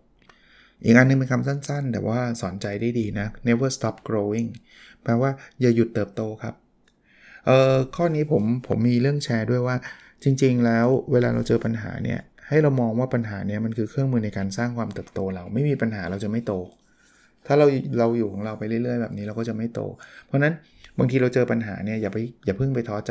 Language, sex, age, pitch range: Thai, male, 20-39, 110-125 Hz